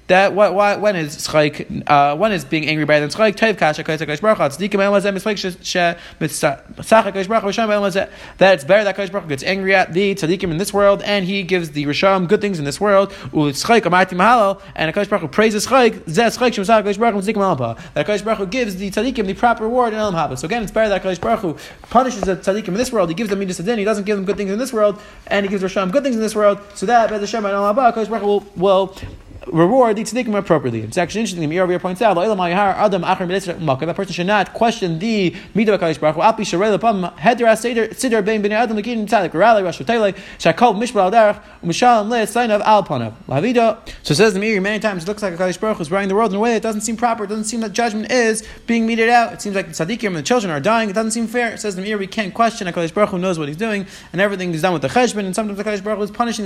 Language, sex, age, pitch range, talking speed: English, male, 20-39, 185-220 Hz, 225 wpm